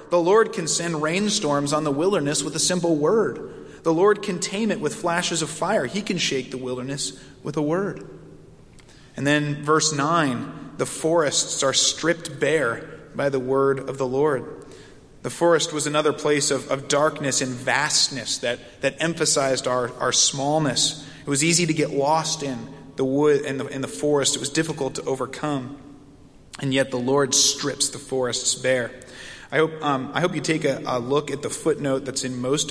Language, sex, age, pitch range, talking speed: English, male, 30-49, 125-150 Hz, 180 wpm